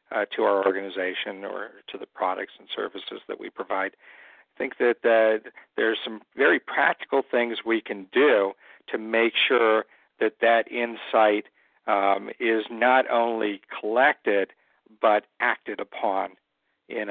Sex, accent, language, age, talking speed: male, American, English, 50-69, 145 wpm